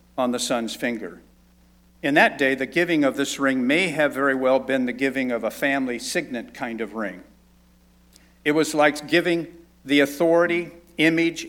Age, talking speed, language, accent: 50-69, 170 wpm, English, American